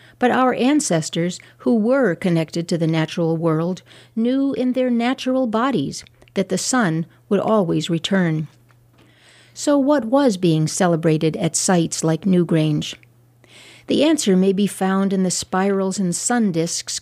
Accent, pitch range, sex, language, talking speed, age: American, 160-215 Hz, female, English, 145 wpm, 60-79